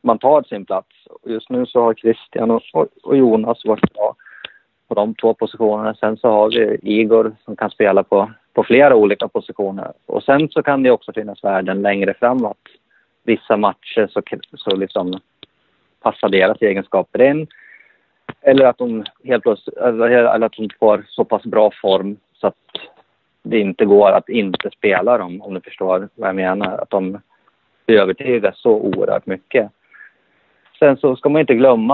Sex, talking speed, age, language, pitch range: male, 165 wpm, 30-49, Swedish, 100-120 Hz